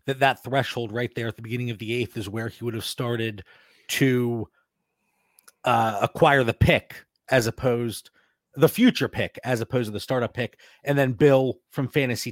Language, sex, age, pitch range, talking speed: English, male, 30-49, 110-135 Hz, 185 wpm